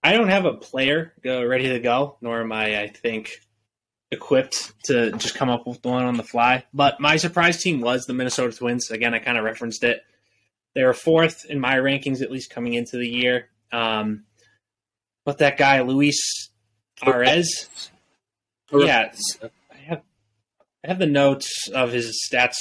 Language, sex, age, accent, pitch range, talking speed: English, male, 20-39, American, 115-140 Hz, 175 wpm